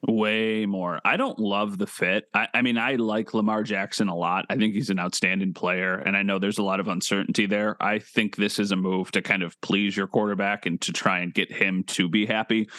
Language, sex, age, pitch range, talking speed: English, male, 30-49, 100-120 Hz, 245 wpm